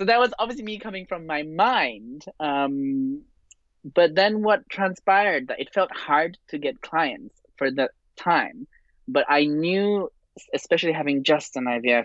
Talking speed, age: 160 wpm, 20-39